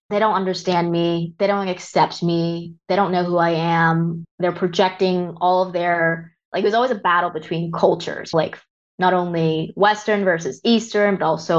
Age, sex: 20-39, female